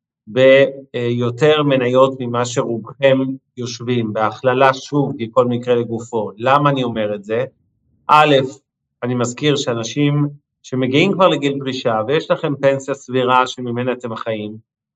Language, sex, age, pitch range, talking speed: Hebrew, male, 50-69, 120-145 Hz, 125 wpm